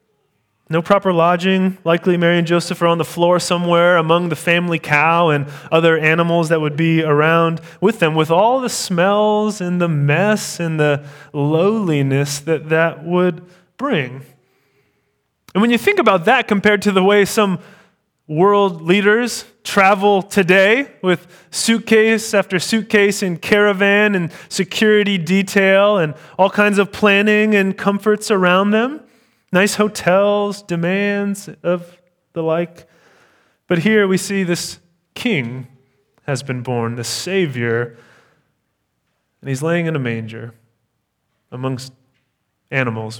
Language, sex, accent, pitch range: English, male, American, 145-200 Hz